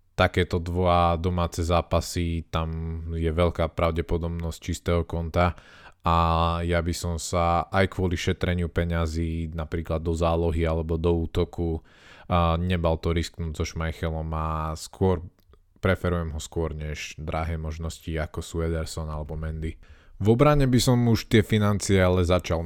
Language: Slovak